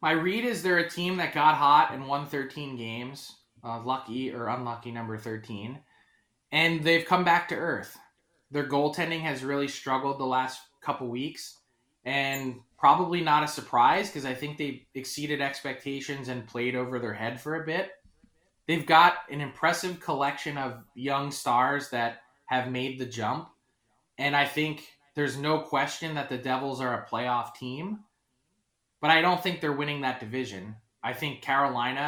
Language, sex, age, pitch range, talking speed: English, male, 20-39, 125-150 Hz, 170 wpm